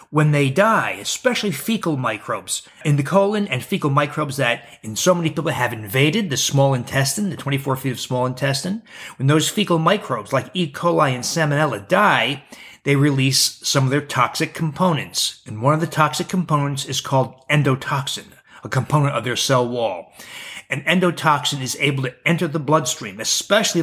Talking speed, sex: 175 wpm, male